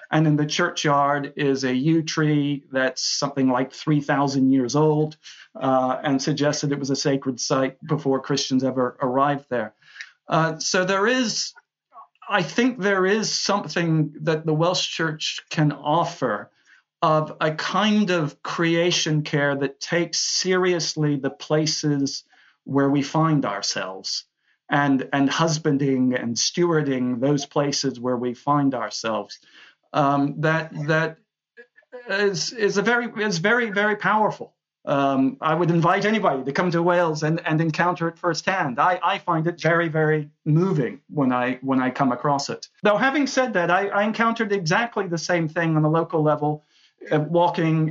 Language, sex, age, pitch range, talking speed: English, male, 50-69, 140-175 Hz, 155 wpm